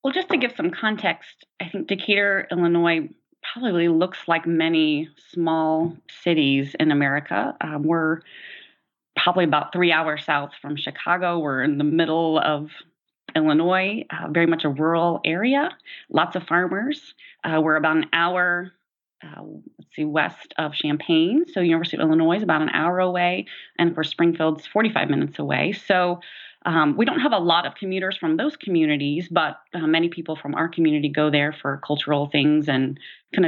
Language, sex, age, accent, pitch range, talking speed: English, female, 30-49, American, 150-180 Hz, 170 wpm